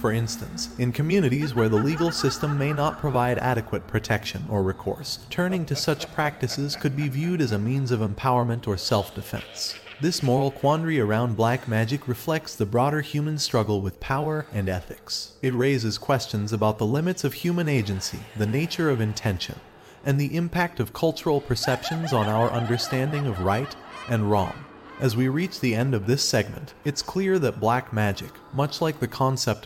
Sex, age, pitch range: male, 30-49, 110-145 Hz